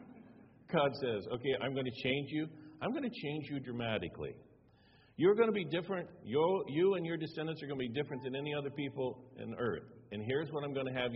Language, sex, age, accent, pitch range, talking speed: English, male, 50-69, American, 110-155 Hz, 220 wpm